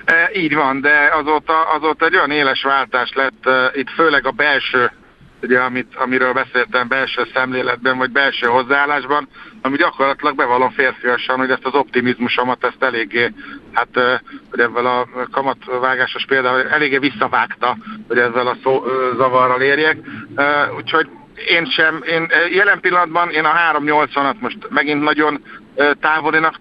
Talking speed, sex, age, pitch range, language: 145 wpm, male, 60-79, 130-150 Hz, Hungarian